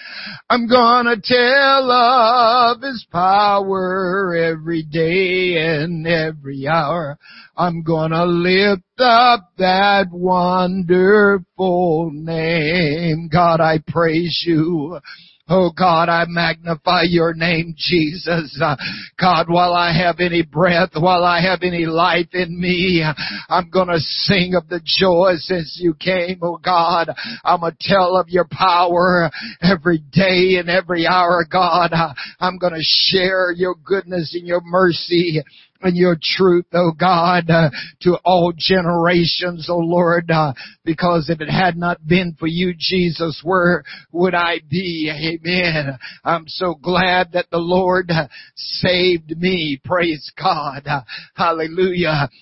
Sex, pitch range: male, 165-185 Hz